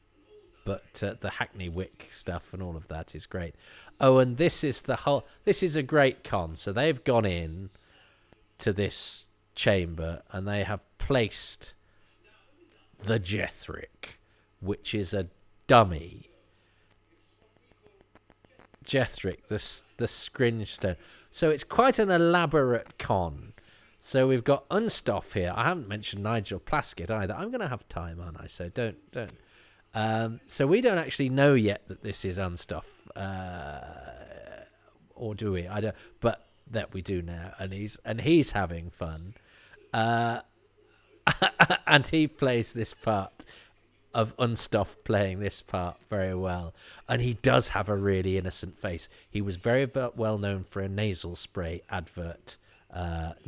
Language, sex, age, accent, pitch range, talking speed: English, male, 40-59, British, 95-115 Hz, 150 wpm